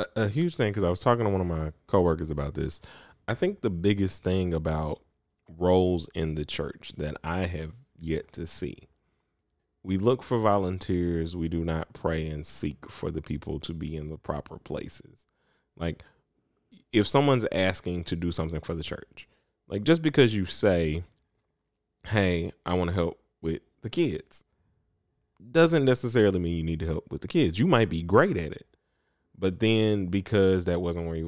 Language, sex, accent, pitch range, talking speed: English, male, American, 80-105 Hz, 180 wpm